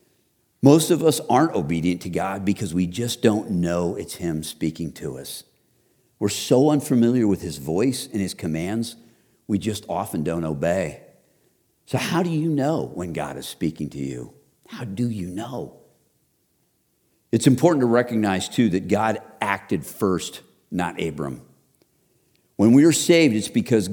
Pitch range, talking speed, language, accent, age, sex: 95-135 Hz, 160 wpm, English, American, 50-69, male